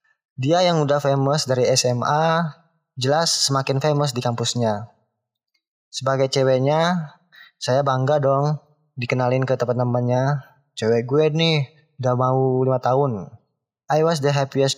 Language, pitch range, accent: Indonesian, 120-145 Hz, native